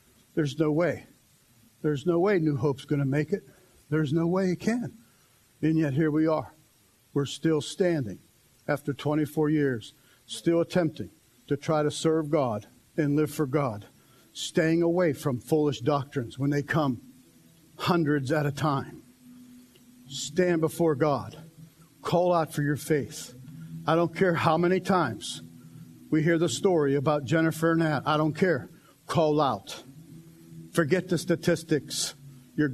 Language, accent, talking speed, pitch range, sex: English, American, 150 wpm, 140-170 Hz, male